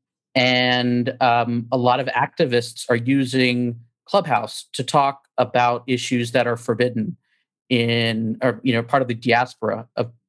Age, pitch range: 40-59, 120-140 Hz